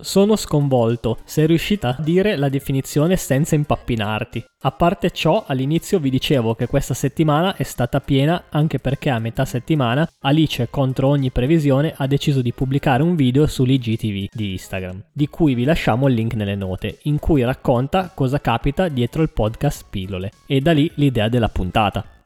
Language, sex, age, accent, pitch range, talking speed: Italian, male, 20-39, native, 120-150 Hz, 170 wpm